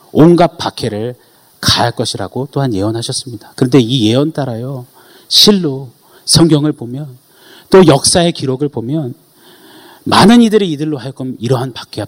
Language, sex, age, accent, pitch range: Korean, male, 40-59, native, 115-155 Hz